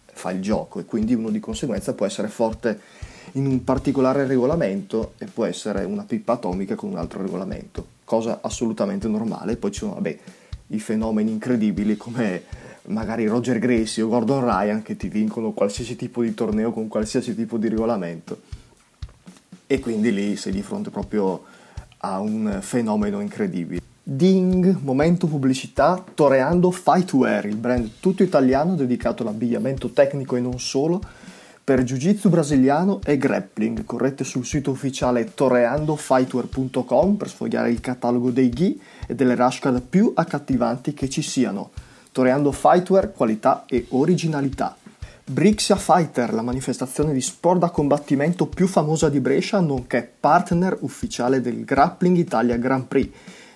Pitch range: 120-165 Hz